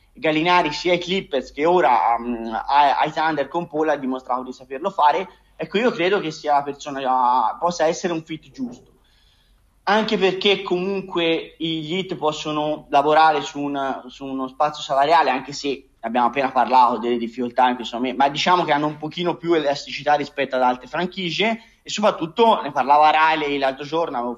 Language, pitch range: Italian, 130-175 Hz